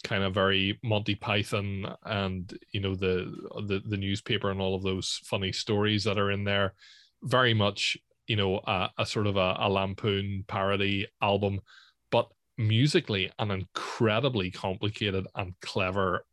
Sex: male